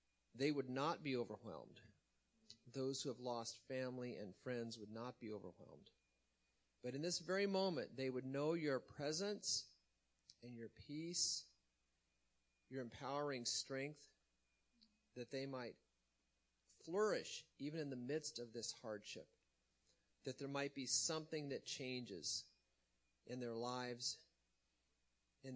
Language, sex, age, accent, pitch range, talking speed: English, male, 40-59, American, 90-140 Hz, 125 wpm